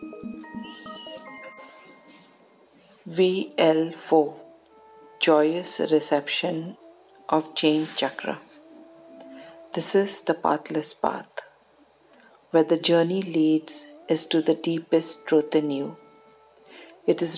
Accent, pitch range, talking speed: Indian, 160-195 Hz, 85 wpm